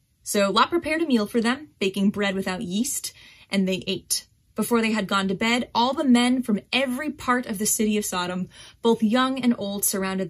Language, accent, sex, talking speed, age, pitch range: English, American, female, 210 wpm, 20-39, 190-235 Hz